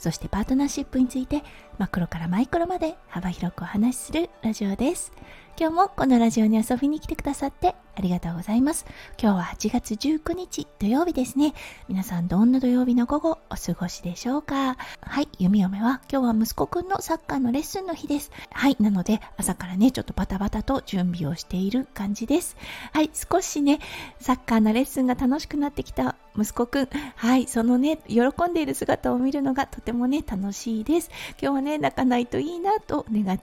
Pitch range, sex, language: 215-300 Hz, female, Japanese